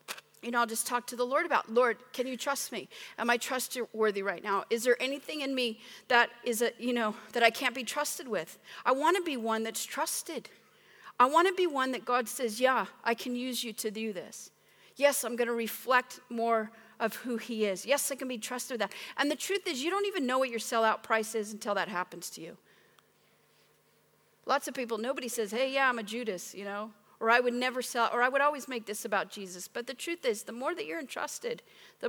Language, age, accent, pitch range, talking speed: English, 40-59, American, 225-265 Hz, 240 wpm